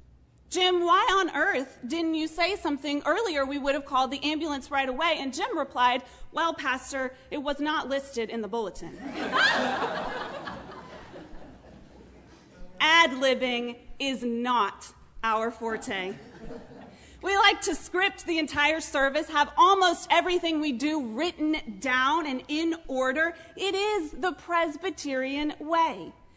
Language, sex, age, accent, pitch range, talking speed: English, female, 30-49, American, 260-345 Hz, 130 wpm